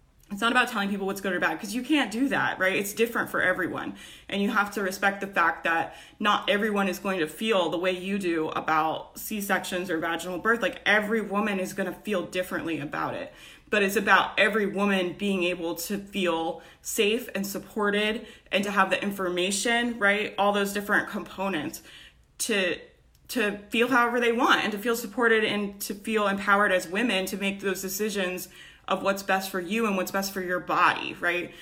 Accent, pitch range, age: American, 185-210 Hz, 20-39